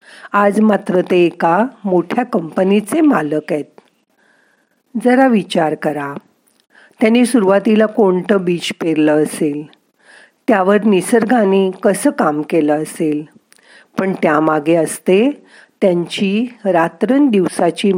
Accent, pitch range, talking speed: native, 170-225 Hz, 95 wpm